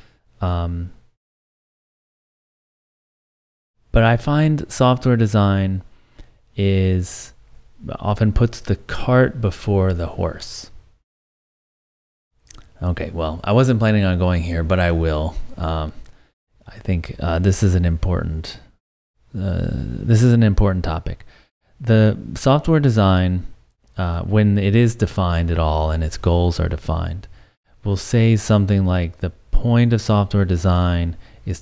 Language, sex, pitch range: English, male, 85-110 Hz